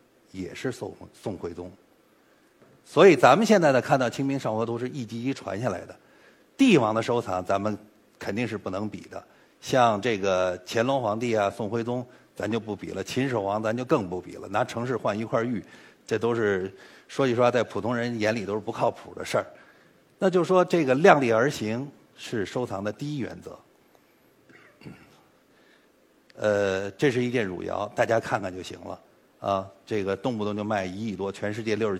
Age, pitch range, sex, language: 50-69, 100-140 Hz, male, Chinese